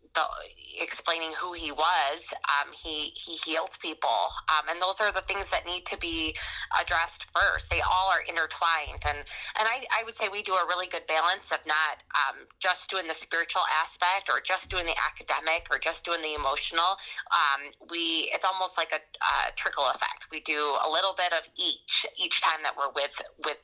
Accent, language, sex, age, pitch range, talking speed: American, English, female, 20-39, 150-190 Hz, 195 wpm